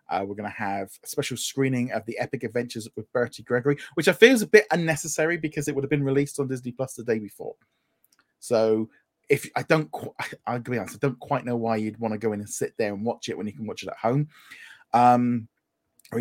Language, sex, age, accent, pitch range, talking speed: English, male, 20-39, British, 115-150 Hz, 250 wpm